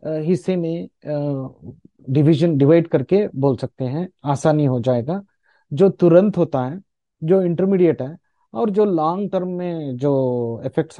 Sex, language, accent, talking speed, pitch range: male, Hindi, native, 145 wpm, 135-180 Hz